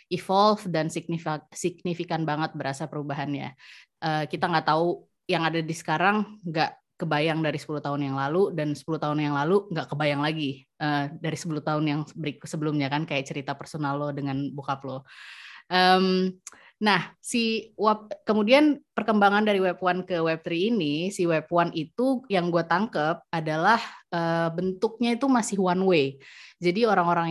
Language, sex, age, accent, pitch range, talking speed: Indonesian, female, 20-39, native, 150-185 Hz, 160 wpm